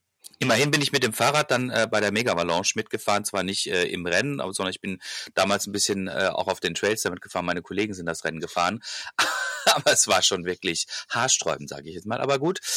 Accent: German